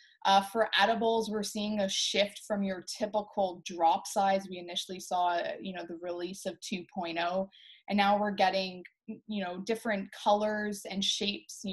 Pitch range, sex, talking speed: 195-225 Hz, female, 165 wpm